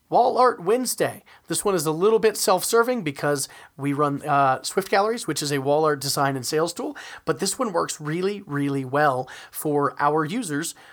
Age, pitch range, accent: 40-59, 145-180 Hz, American